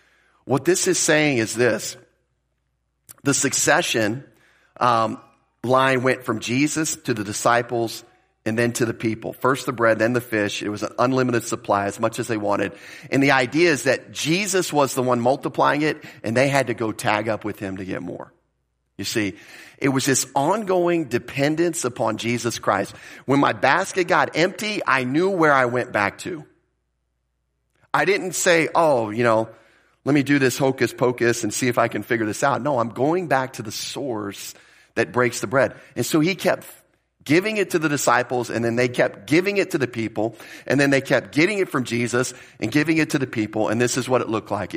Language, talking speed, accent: English, 205 wpm, American